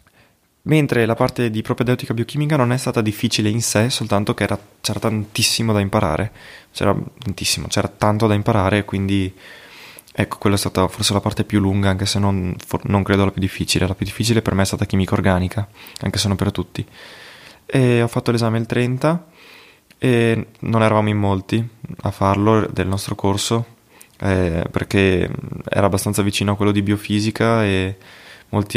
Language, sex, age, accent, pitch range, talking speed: Italian, male, 20-39, native, 95-115 Hz, 170 wpm